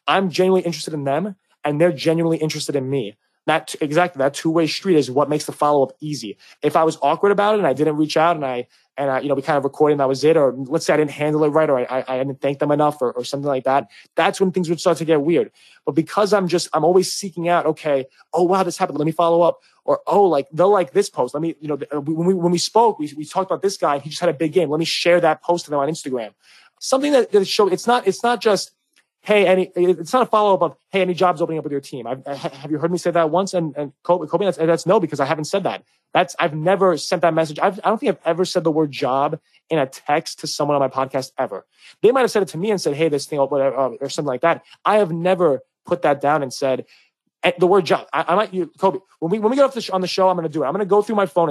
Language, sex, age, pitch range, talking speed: English, male, 20-39, 145-185 Hz, 300 wpm